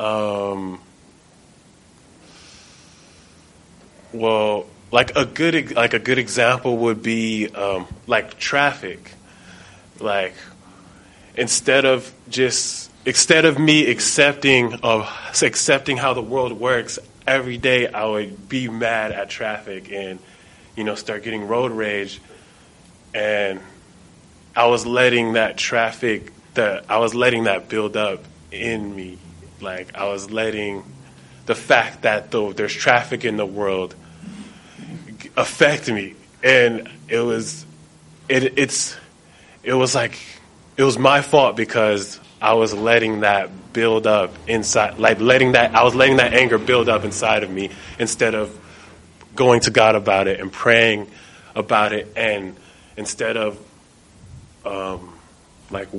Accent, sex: American, male